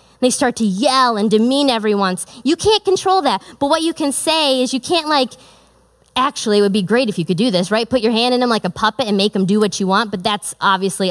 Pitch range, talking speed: 210-275 Hz, 270 wpm